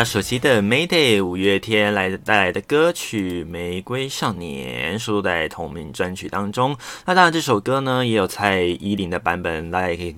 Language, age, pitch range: Chinese, 20-39, 100-125 Hz